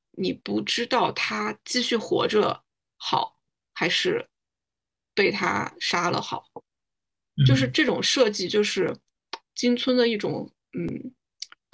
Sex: female